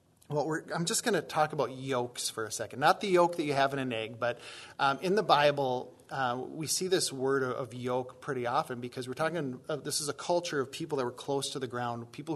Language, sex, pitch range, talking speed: English, male, 130-165 Hz, 255 wpm